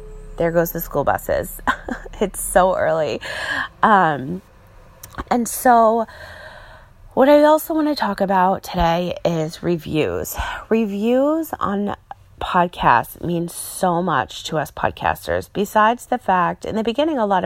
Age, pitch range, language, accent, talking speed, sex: 30-49, 160-225 Hz, English, American, 130 wpm, female